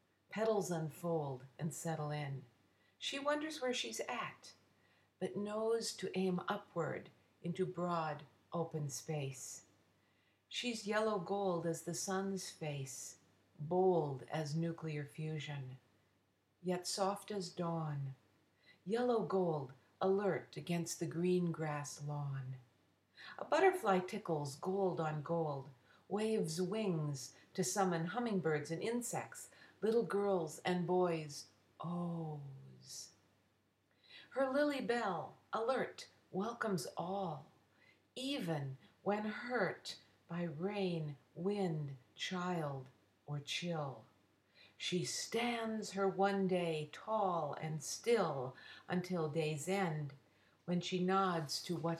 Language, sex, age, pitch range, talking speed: English, female, 60-79, 140-195 Hz, 105 wpm